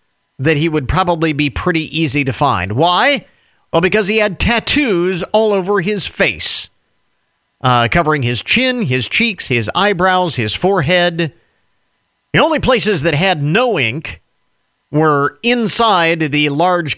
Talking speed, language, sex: 140 wpm, English, male